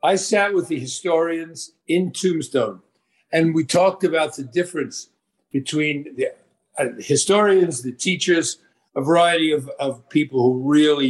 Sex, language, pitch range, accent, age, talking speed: male, English, 130-175 Hz, American, 50-69, 145 wpm